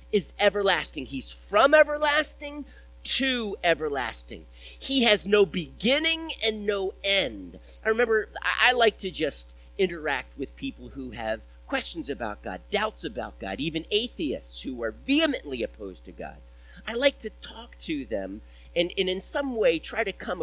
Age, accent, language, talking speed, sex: 40-59, American, English, 155 wpm, male